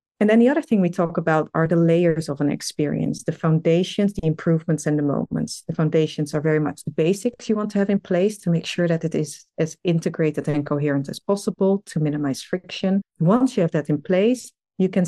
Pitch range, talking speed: 155-190 Hz, 225 wpm